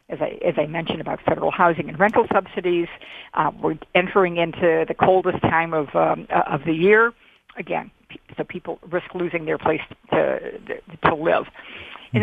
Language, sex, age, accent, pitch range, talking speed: English, female, 50-69, American, 175-220 Hz, 155 wpm